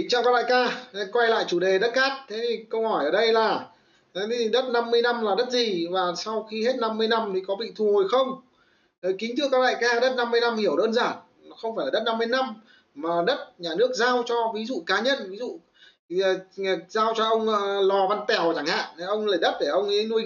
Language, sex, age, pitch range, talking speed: Vietnamese, male, 20-39, 195-255 Hz, 245 wpm